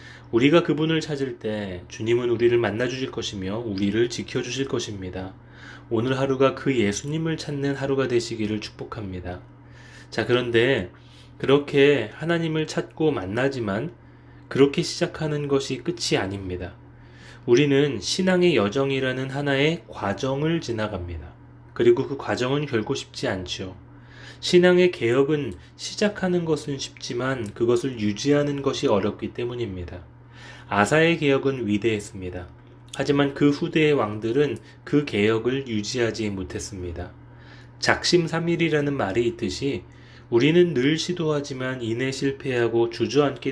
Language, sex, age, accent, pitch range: Korean, male, 20-39, native, 105-145 Hz